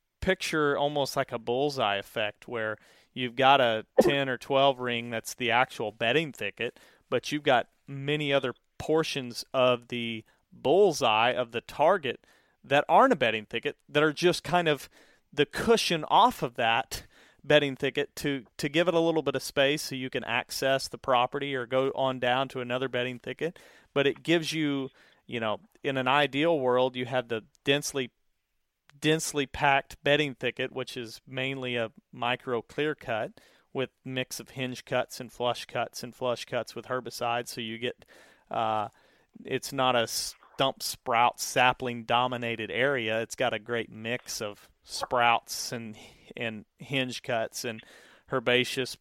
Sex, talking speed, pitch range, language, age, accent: male, 165 wpm, 115-140 Hz, English, 30-49, American